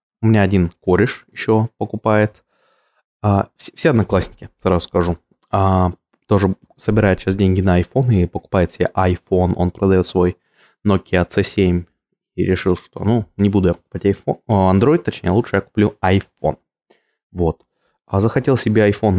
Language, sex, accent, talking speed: Russian, male, native, 140 wpm